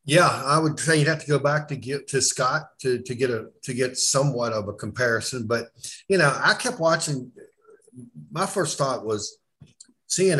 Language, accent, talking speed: English, American, 195 wpm